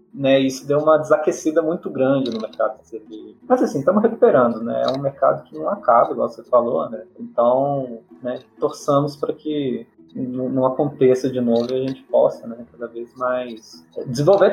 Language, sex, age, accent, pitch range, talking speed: Portuguese, male, 20-39, Brazilian, 115-175 Hz, 180 wpm